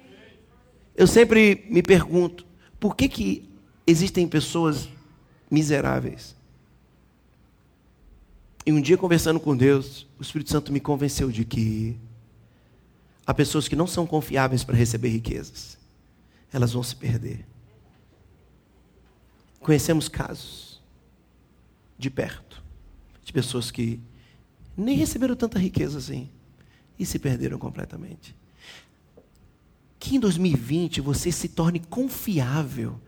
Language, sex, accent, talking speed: Portuguese, male, Brazilian, 105 wpm